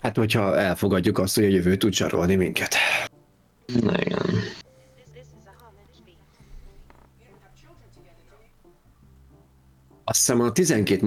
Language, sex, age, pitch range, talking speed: Hungarian, male, 40-59, 80-110 Hz, 85 wpm